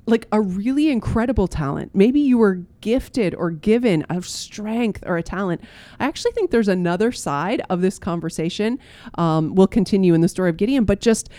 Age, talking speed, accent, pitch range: 30-49, 185 wpm, American, 165-225 Hz